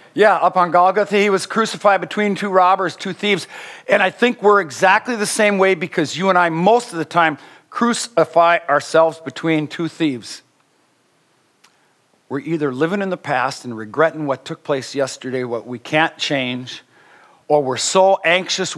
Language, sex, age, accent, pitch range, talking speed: English, male, 50-69, American, 145-195 Hz, 170 wpm